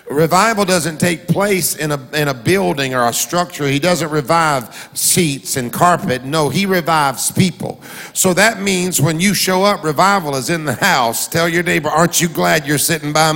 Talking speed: 195 wpm